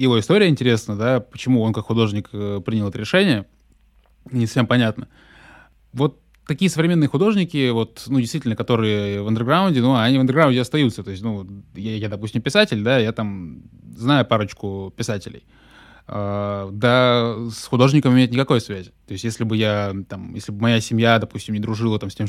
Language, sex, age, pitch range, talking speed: Russian, male, 20-39, 105-130 Hz, 180 wpm